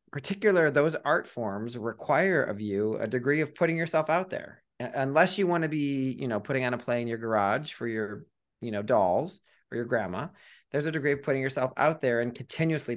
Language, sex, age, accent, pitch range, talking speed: English, male, 30-49, American, 115-145 Hz, 215 wpm